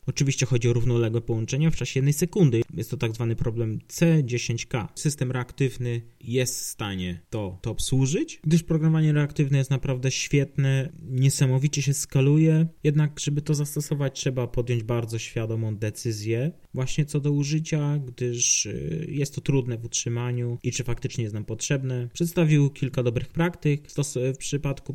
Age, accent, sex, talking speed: 20-39, native, male, 150 wpm